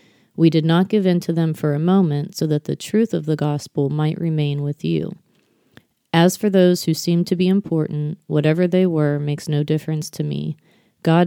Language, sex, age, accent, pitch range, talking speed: English, female, 30-49, American, 150-175 Hz, 200 wpm